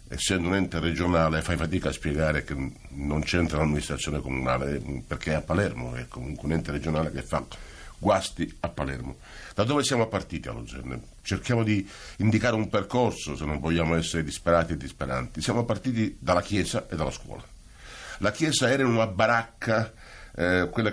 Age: 60-79